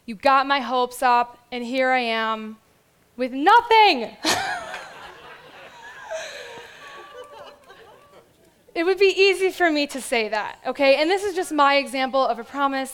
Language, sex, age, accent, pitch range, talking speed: English, female, 20-39, American, 230-290 Hz, 140 wpm